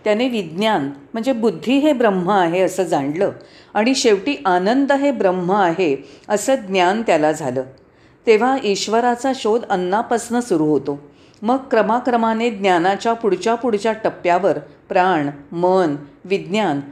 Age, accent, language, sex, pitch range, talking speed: 40-59, native, Marathi, female, 170-230 Hz, 120 wpm